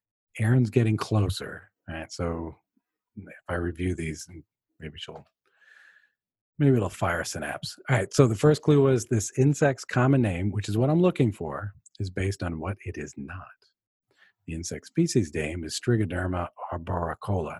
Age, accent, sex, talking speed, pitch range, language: 40-59, American, male, 165 wpm, 90-125 Hz, English